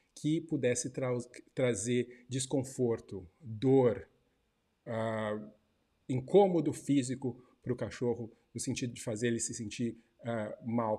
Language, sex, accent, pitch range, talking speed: Portuguese, male, Brazilian, 120-165 Hz, 100 wpm